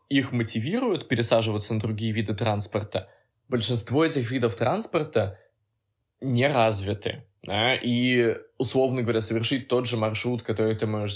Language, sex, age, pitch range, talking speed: Russian, male, 20-39, 110-125 Hz, 120 wpm